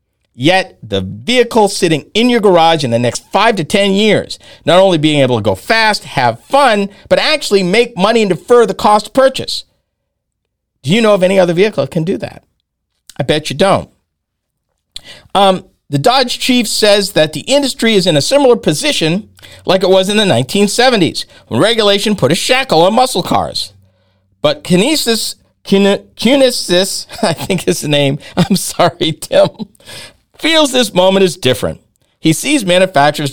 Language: English